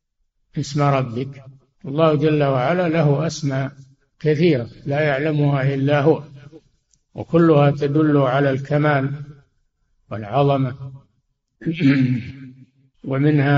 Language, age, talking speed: Arabic, 60-79, 80 wpm